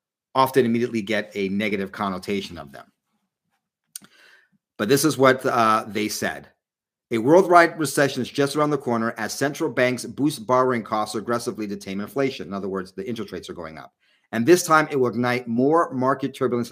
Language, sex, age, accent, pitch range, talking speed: English, male, 40-59, American, 105-130 Hz, 185 wpm